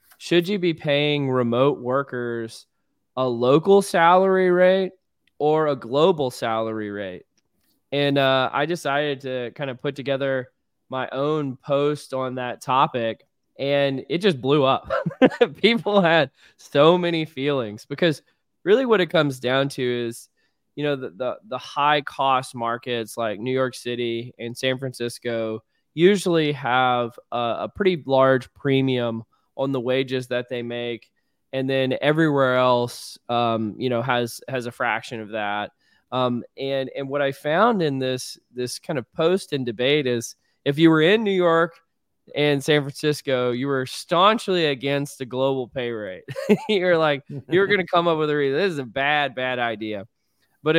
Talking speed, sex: 160 wpm, male